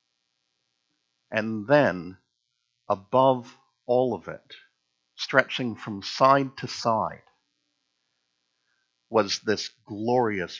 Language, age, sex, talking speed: English, 60-79, male, 80 wpm